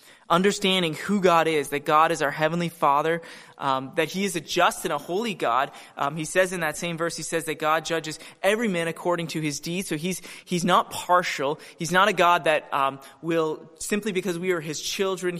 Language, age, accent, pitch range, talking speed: English, 20-39, American, 150-185 Hz, 220 wpm